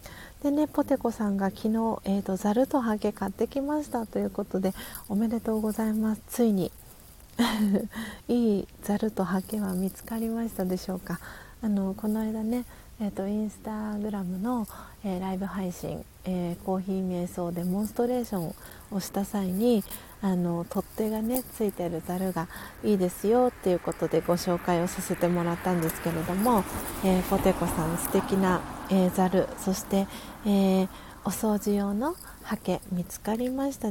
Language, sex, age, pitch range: Japanese, female, 40-59, 180-220 Hz